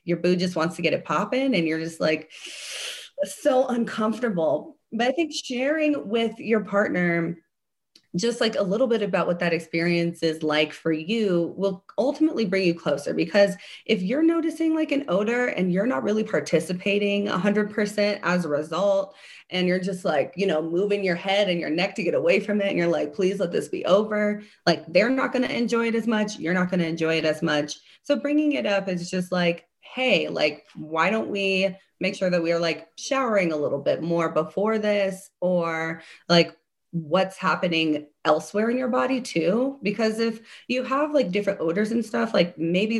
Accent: American